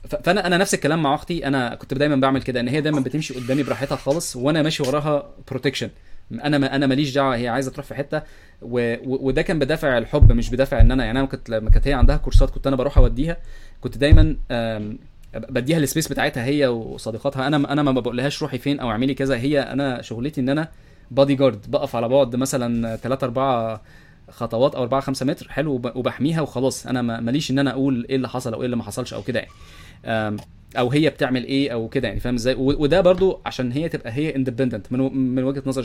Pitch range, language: 120-140 Hz, Arabic